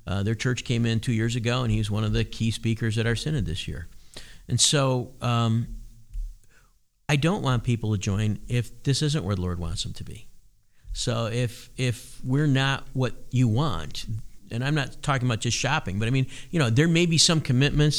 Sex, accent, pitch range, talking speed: male, American, 110-130 Hz, 215 wpm